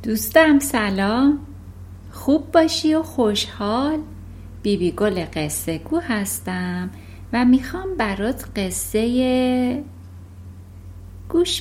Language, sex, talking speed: Persian, female, 80 wpm